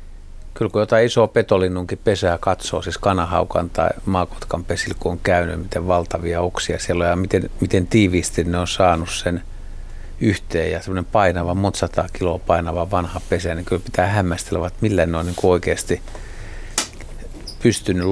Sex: male